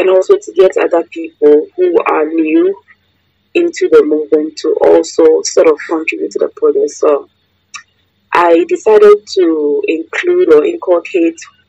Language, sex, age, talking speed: English, female, 20-39, 140 wpm